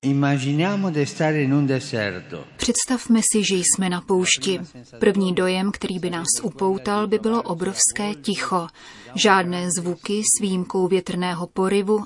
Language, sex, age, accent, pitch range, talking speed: Czech, female, 30-49, native, 180-210 Hz, 110 wpm